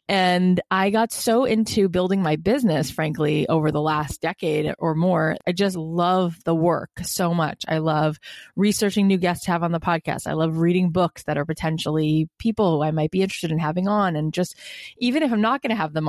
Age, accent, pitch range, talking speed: 20-39, American, 165-210 Hz, 215 wpm